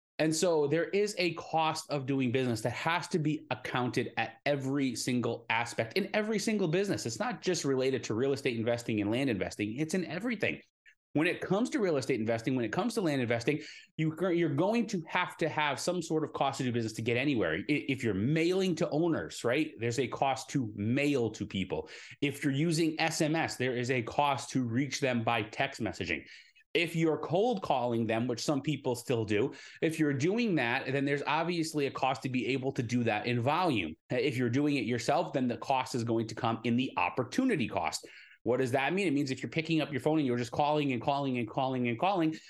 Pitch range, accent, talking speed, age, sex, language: 115-155 Hz, American, 220 wpm, 30-49, male, English